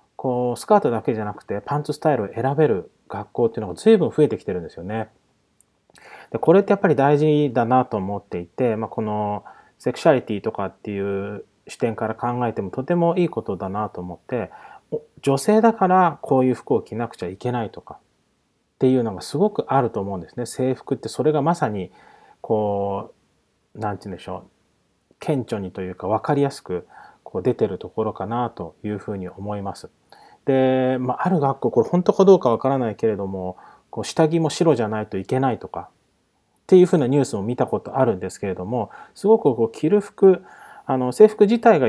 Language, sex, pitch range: Japanese, male, 105-155 Hz